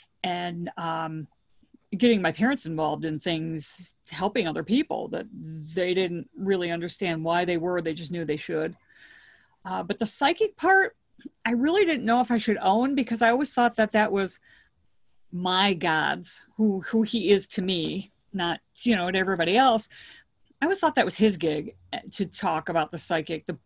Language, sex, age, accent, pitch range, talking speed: English, female, 40-59, American, 170-225 Hz, 180 wpm